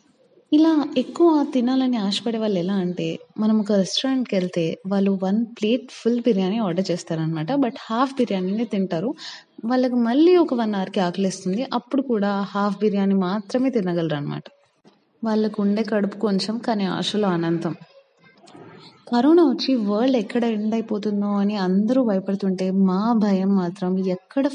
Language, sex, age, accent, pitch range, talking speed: Telugu, female, 20-39, native, 190-245 Hz, 135 wpm